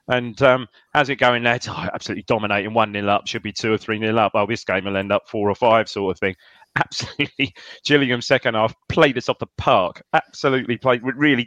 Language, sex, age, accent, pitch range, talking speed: English, male, 30-49, British, 105-125 Hz, 225 wpm